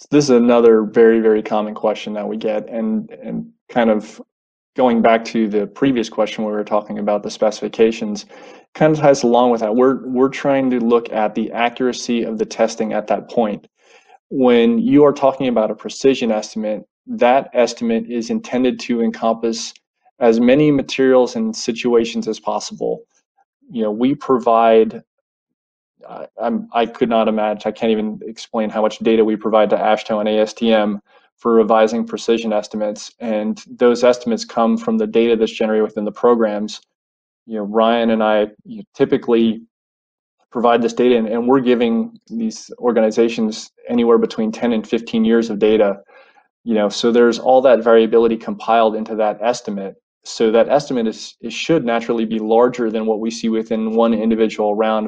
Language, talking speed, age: English, 170 wpm, 20-39